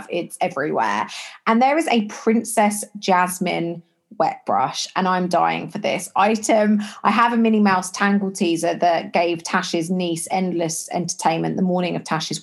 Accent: British